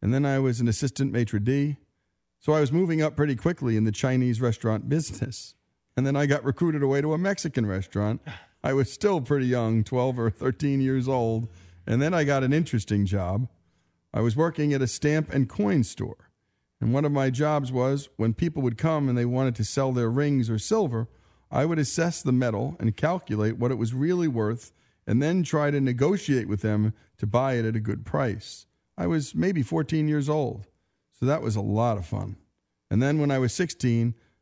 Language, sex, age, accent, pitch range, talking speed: English, male, 40-59, American, 110-145 Hz, 210 wpm